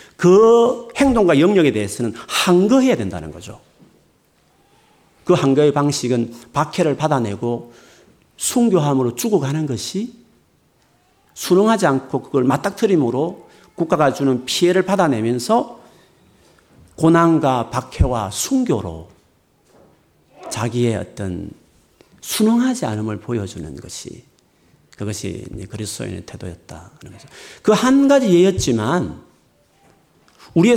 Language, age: Korean, 40-59